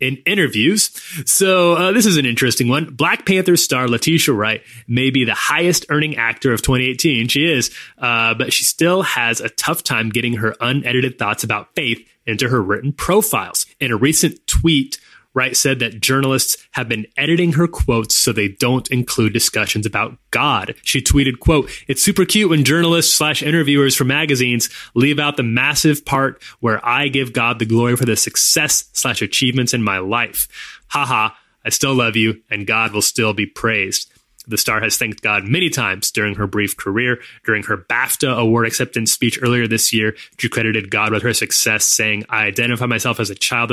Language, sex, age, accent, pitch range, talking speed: English, male, 30-49, American, 115-145 Hz, 190 wpm